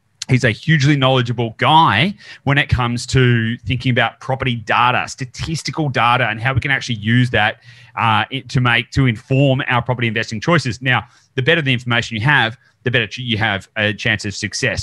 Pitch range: 120-140 Hz